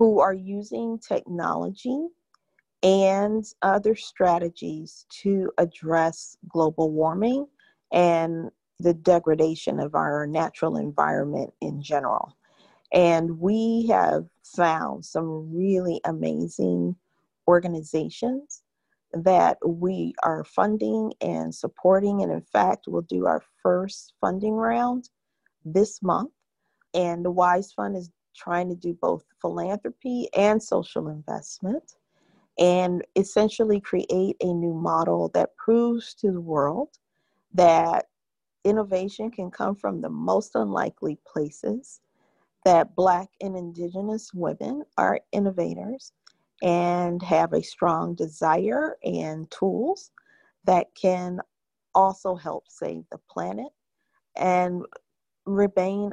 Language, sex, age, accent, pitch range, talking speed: English, female, 40-59, American, 165-210 Hz, 110 wpm